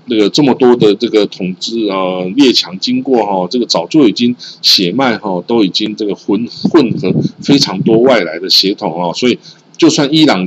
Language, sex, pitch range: Chinese, male, 100-145 Hz